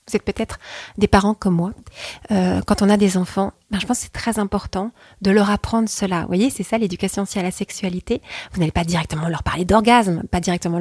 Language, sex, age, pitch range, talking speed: French, female, 30-49, 185-220 Hz, 235 wpm